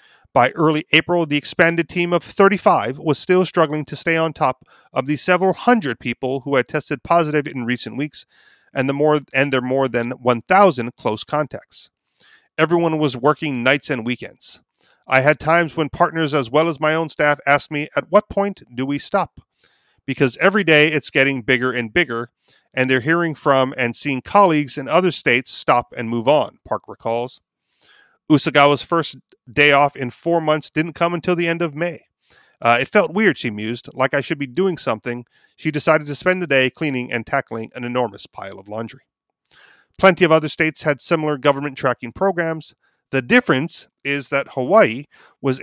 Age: 30-49